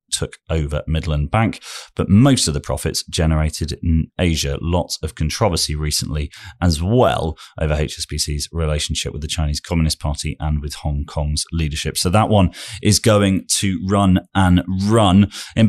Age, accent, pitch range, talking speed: 30-49, British, 75-95 Hz, 155 wpm